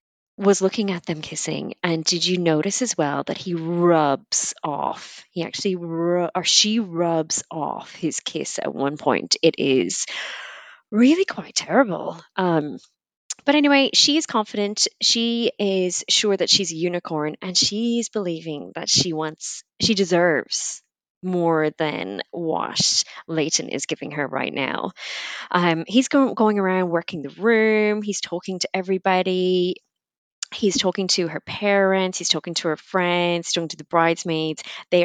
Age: 20-39